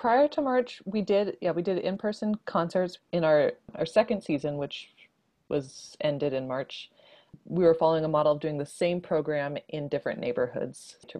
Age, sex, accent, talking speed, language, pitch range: 20-39, female, American, 180 wpm, English, 150-185 Hz